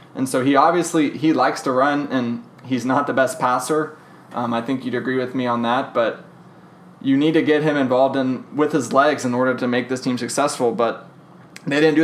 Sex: male